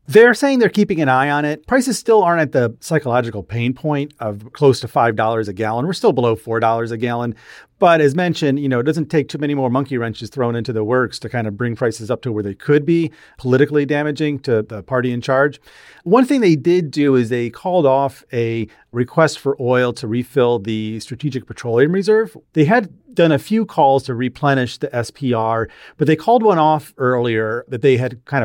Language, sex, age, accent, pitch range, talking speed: English, male, 40-59, American, 115-150 Hz, 215 wpm